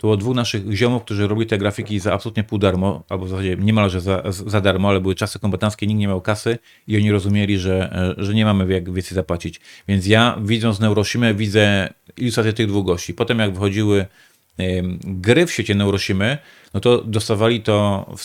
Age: 40-59